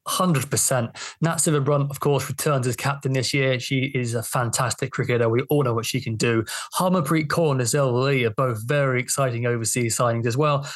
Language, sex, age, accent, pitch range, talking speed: English, male, 20-39, British, 125-150 Hz, 200 wpm